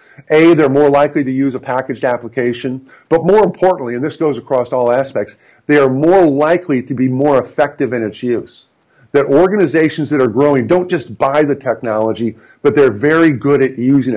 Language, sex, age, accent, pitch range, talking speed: English, male, 50-69, American, 125-150 Hz, 190 wpm